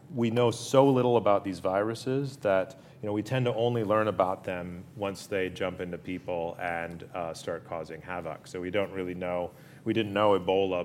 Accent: American